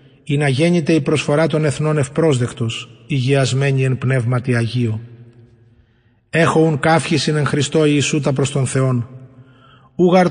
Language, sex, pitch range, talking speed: English, male, 130-155 Hz, 120 wpm